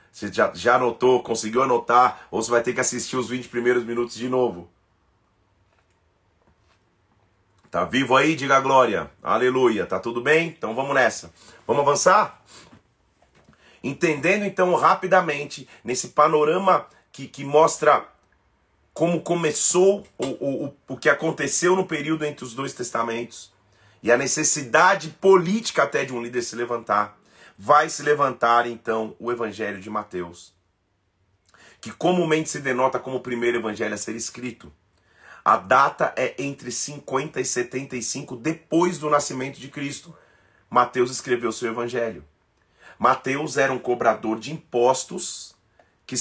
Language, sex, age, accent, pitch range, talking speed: Portuguese, male, 40-59, Brazilian, 110-145 Hz, 140 wpm